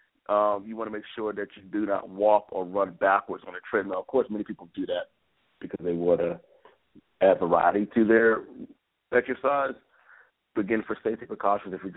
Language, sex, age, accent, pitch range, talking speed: English, male, 50-69, American, 90-115 Hz, 190 wpm